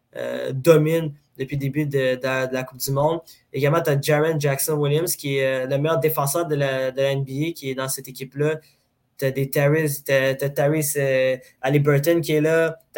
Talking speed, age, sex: 210 wpm, 20-39, male